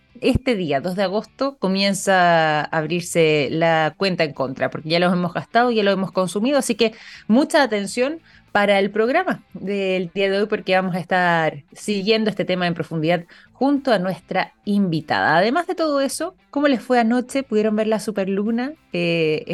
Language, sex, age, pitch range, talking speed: Spanish, female, 20-39, 180-230 Hz, 180 wpm